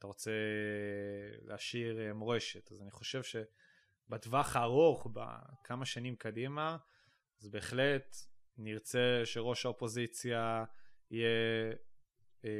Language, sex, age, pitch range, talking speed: Hebrew, male, 20-39, 110-125 Hz, 85 wpm